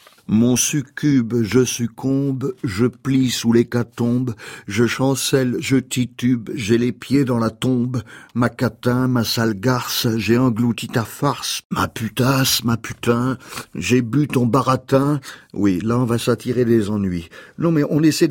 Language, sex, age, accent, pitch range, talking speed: French, male, 50-69, French, 115-135 Hz, 150 wpm